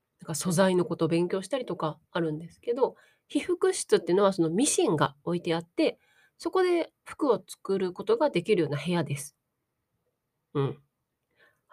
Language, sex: Japanese, female